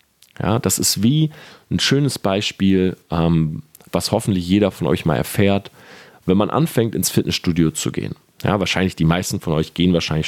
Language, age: German, 40-59